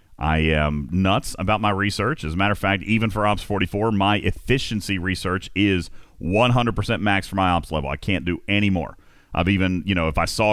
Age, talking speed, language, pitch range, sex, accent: 40-59, 210 wpm, English, 95-120 Hz, male, American